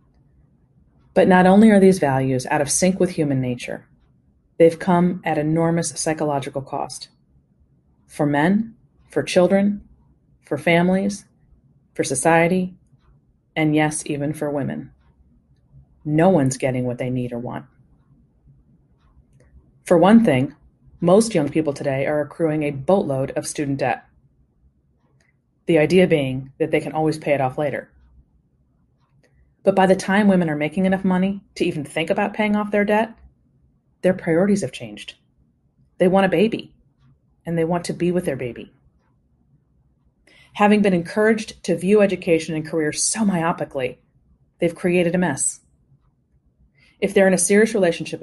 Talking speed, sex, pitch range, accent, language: 145 wpm, female, 140-185 Hz, American, English